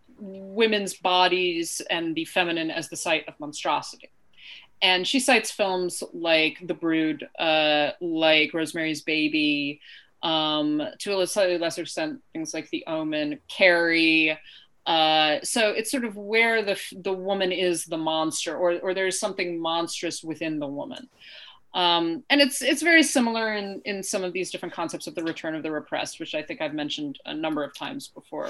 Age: 30-49